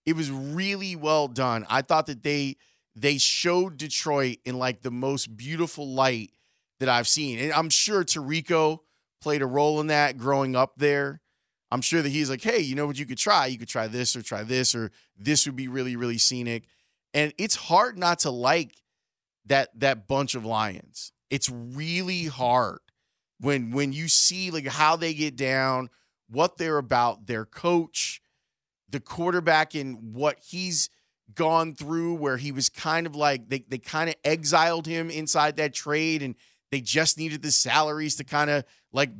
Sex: male